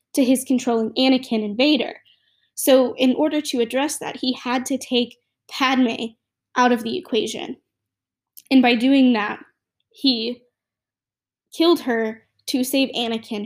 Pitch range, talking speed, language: 230-275 Hz, 140 wpm, English